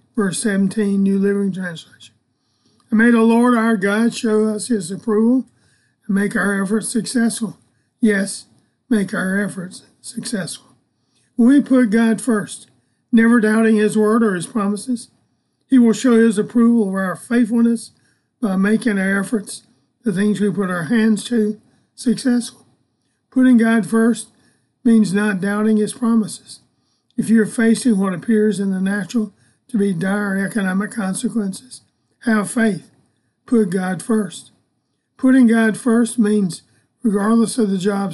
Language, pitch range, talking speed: English, 195-230 Hz, 140 wpm